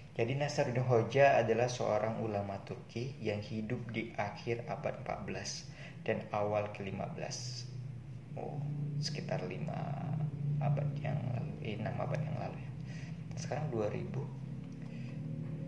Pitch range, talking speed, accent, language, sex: 105-150 Hz, 110 wpm, native, Indonesian, male